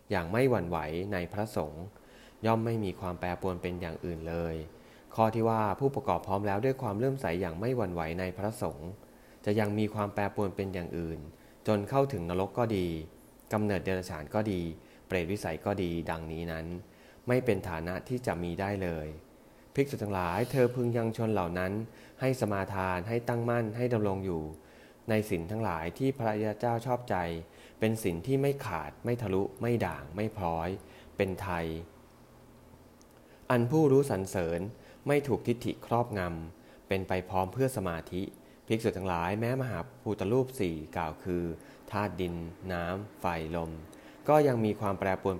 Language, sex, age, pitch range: English, male, 20-39, 85-110 Hz